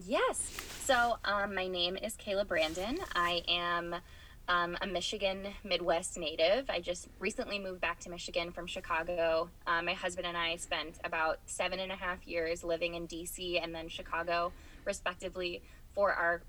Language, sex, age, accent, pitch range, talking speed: English, female, 20-39, American, 170-200 Hz, 165 wpm